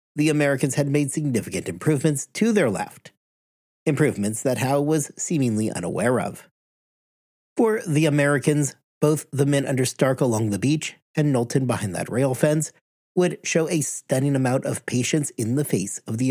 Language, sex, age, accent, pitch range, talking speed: English, male, 40-59, American, 125-155 Hz, 165 wpm